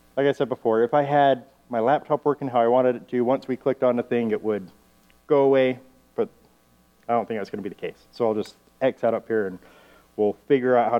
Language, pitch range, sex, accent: English, 100-130 Hz, male, American